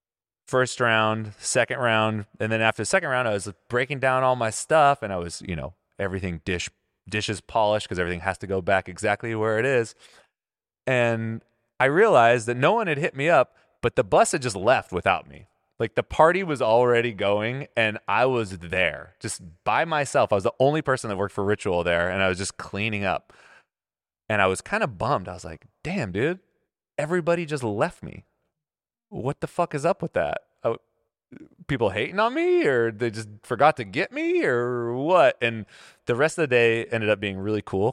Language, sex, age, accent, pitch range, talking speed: English, male, 20-39, American, 90-120 Hz, 205 wpm